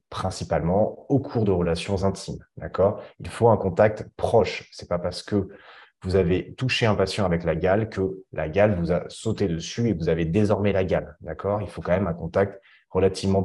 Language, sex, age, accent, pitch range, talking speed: French, male, 20-39, French, 90-110 Hz, 205 wpm